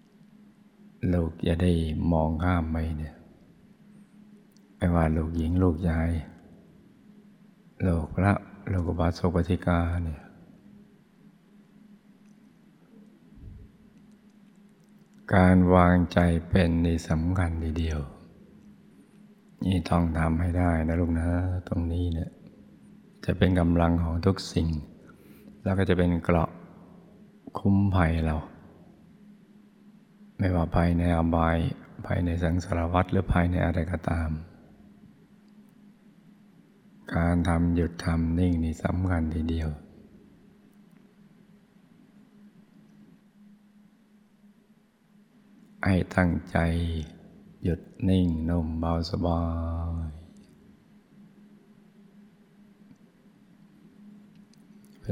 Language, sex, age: Thai, male, 60-79